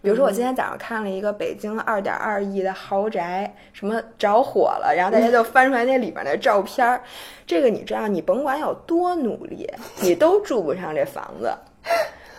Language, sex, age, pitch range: Chinese, female, 20-39, 195-270 Hz